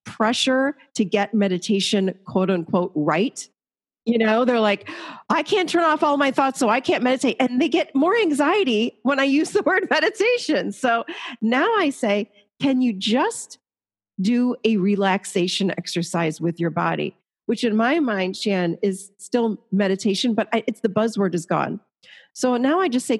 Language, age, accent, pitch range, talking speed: English, 40-59, American, 195-255 Hz, 170 wpm